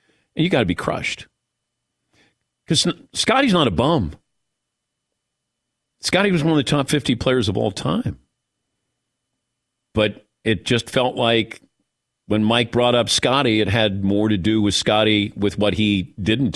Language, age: English, 50-69